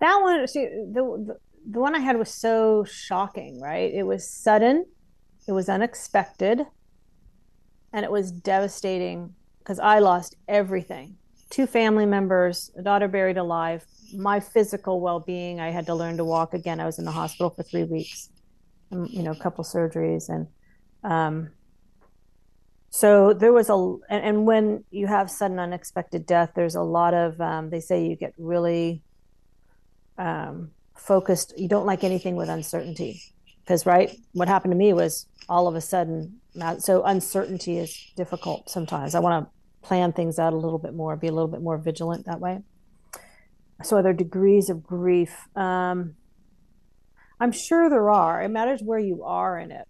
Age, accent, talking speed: 40-59, American, 170 wpm